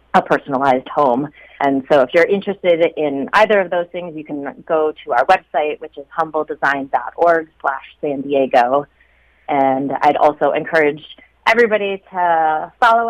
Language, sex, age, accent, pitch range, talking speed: English, female, 30-49, American, 140-175 Hz, 145 wpm